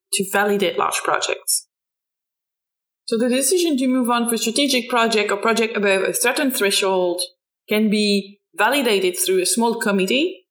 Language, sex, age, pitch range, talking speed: English, female, 20-39, 195-260 Hz, 150 wpm